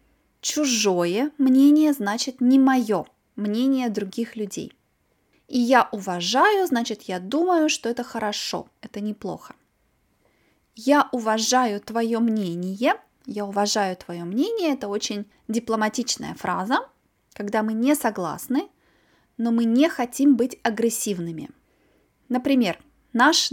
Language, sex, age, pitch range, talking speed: Russian, female, 20-39, 210-270 Hz, 110 wpm